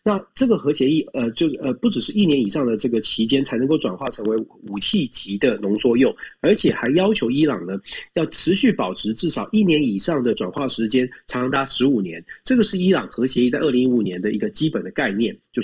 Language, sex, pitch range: Chinese, male, 125-210 Hz